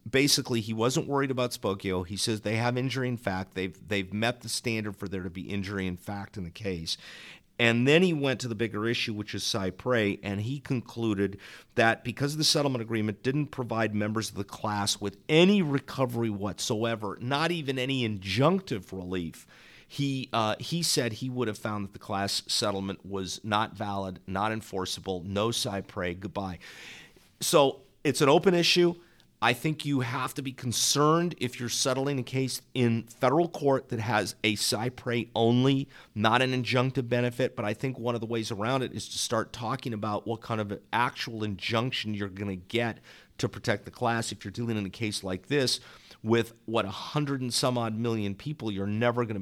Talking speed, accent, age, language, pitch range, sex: 190 wpm, American, 50-69, English, 100-125 Hz, male